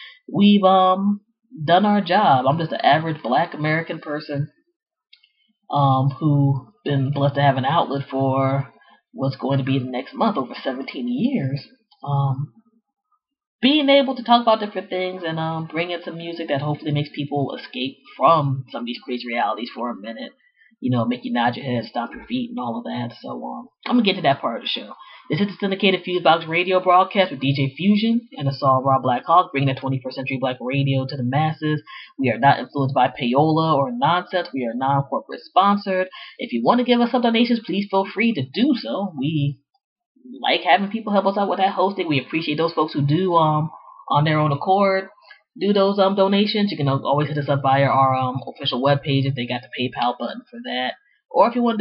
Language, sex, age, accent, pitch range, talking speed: English, female, 20-39, American, 135-205 Hz, 215 wpm